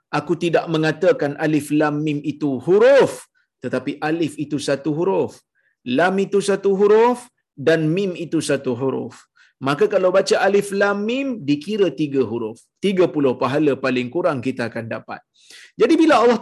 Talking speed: 150 wpm